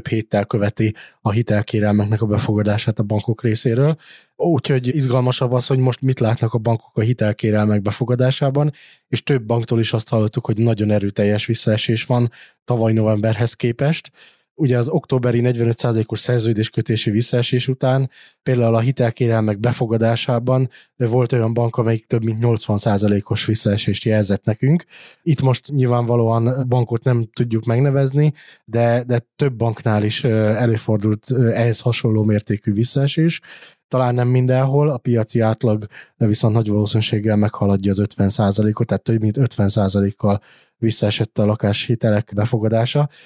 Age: 20-39